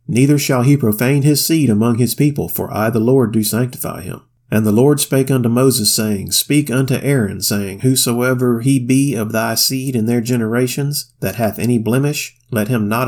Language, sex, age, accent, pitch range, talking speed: English, male, 40-59, American, 110-130 Hz, 195 wpm